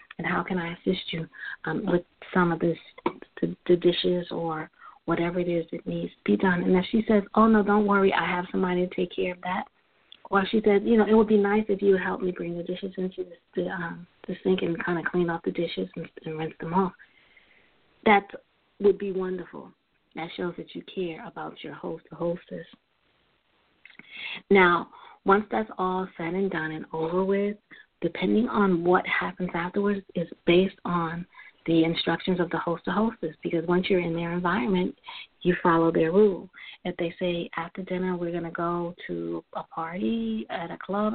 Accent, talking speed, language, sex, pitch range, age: American, 195 wpm, English, female, 170-200 Hz, 40-59